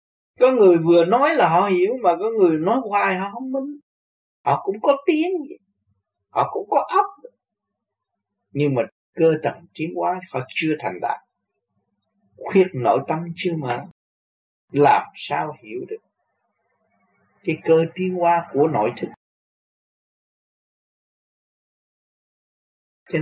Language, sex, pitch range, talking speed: Vietnamese, male, 145-210 Hz, 130 wpm